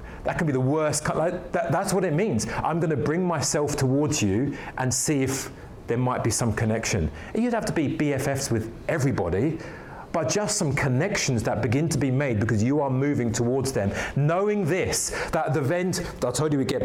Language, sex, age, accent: English, male, 40-59, British